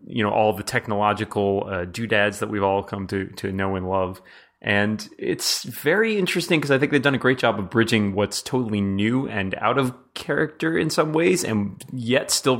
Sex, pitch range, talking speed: male, 95-115 Hz, 205 wpm